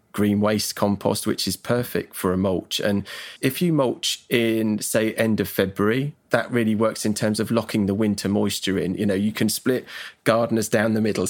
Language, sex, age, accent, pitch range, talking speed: English, male, 30-49, British, 100-110 Hz, 200 wpm